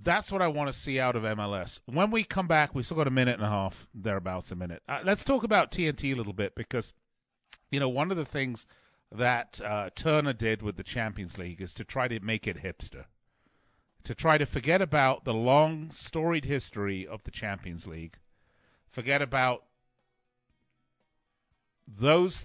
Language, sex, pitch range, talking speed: English, male, 100-135 Hz, 185 wpm